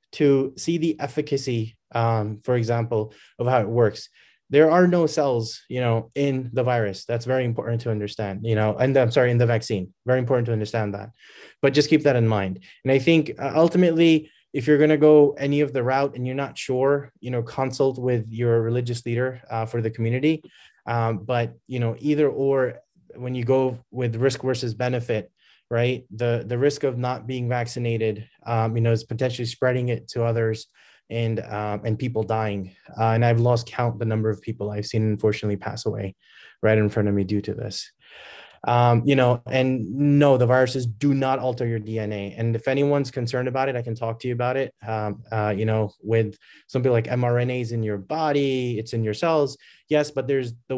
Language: English